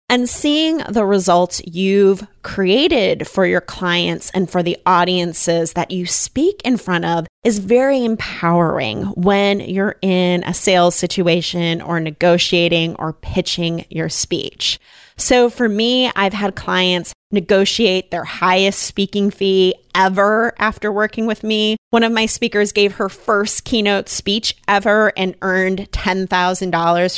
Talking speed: 140 wpm